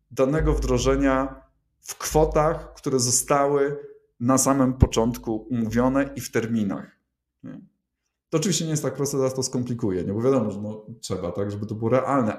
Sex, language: male, Polish